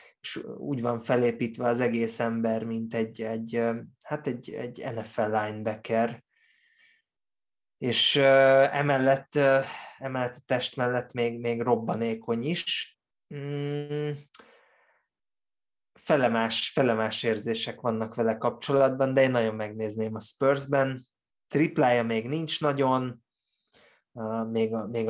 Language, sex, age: Hungarian, male, 20-39